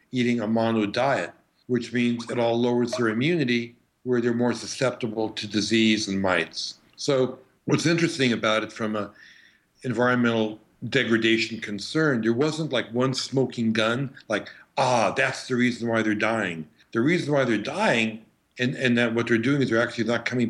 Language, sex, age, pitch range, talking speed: English, male, 60-79, 115-135 Hz, 175 wpm